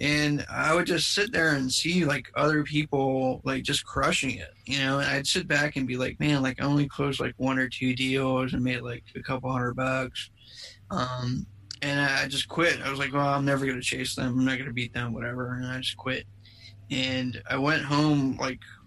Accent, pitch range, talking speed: American, 125-140 Hz, 230 wpm